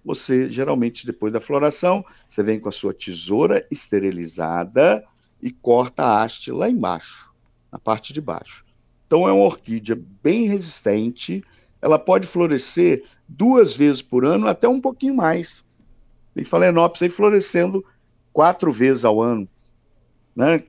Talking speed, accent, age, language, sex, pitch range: 140 wpm, Brazilian, 50-69, Portuguese, male, 110-170 Hz